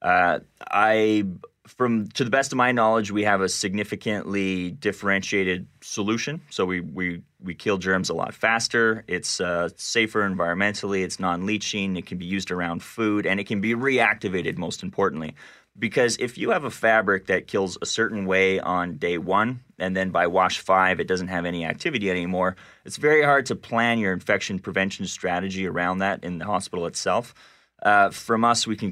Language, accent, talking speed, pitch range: English, American, 185 wpm, 90-110 Hz